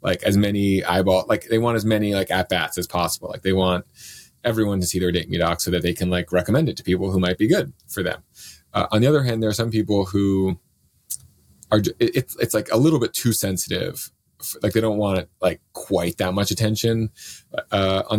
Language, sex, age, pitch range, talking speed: English, male, 30-49, 90-110 Hz, 225 wpm